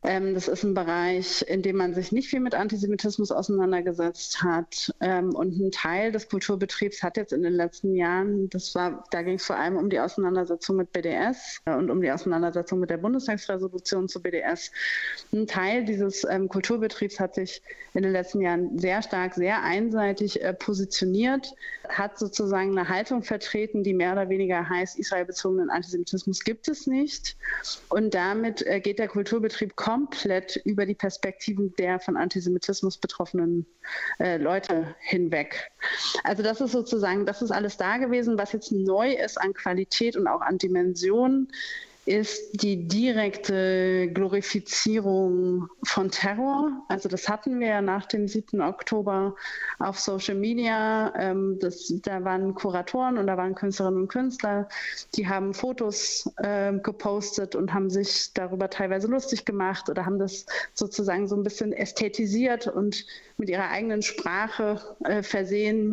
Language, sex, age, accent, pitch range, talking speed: German, female, 30-49, German, 185-215 Hz, 150 wpm